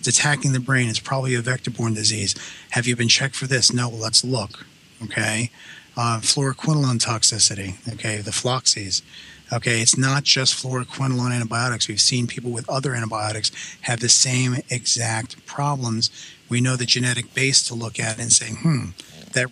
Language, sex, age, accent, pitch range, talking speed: English, male, 40-59, American, 115-140 Hz, 165 wpm